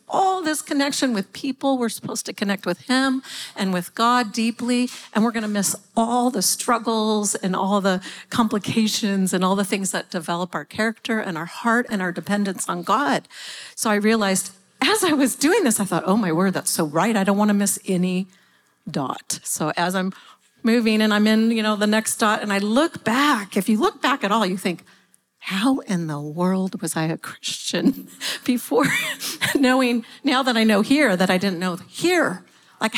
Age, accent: 50-69, American